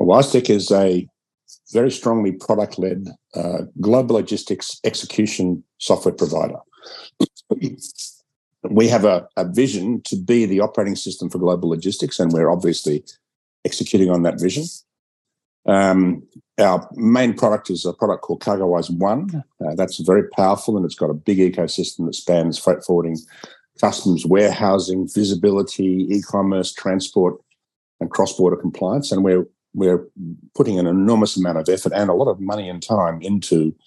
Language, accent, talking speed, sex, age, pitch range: English, Australian, 145 wpm, male, 50-69, 90-105 Hz